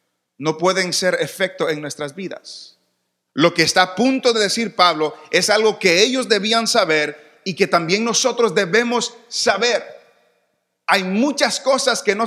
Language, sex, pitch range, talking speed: English, male, 180-240 Hz, 155 wpm